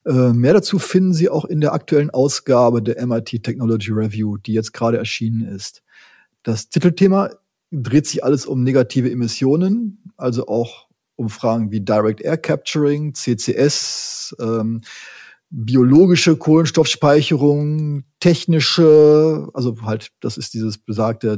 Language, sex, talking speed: German, male, 125 wpm